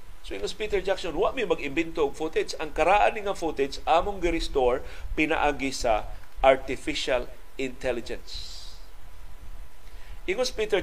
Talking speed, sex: 115 wpm, male